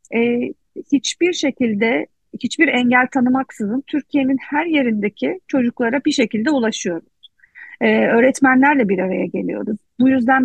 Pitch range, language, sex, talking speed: 210-265 Hz, Turkish, female, 115 wpm